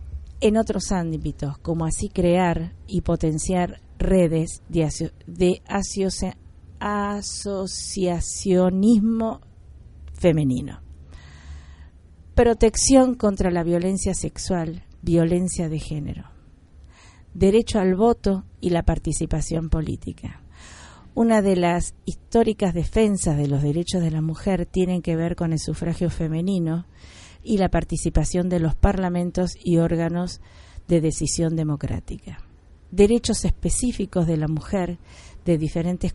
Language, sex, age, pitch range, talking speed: Spanish, female, 40-59, 150-185 Hz, 105 wpm